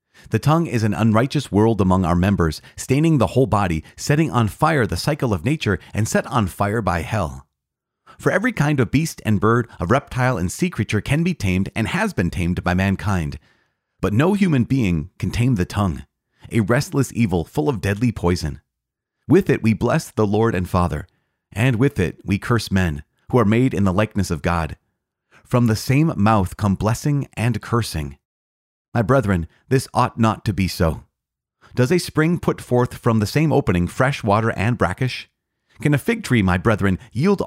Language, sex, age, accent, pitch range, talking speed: English, male, 30-49, American, 90-130 Hz, 190 wpm